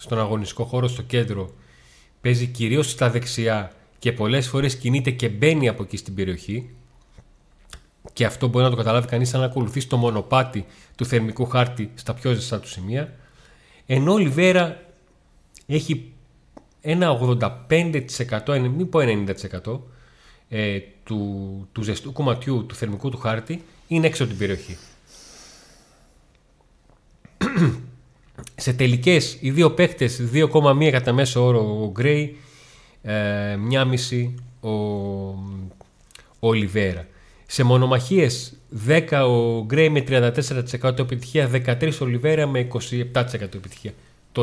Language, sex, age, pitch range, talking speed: Greek, male, 40-59, 110-135 Hz, 125 wpm